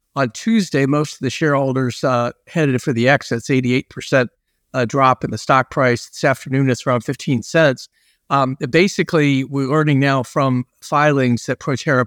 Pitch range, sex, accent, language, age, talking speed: 125-150 Hz, male, American, English, 50-69, 165 wpm